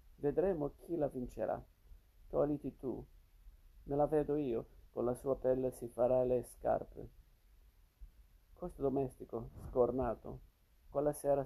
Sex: male